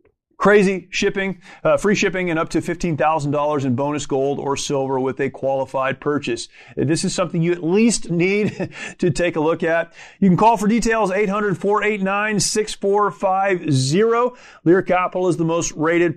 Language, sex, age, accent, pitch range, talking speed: English, male, 30-49, American, 150-185 Hz, 190 wpm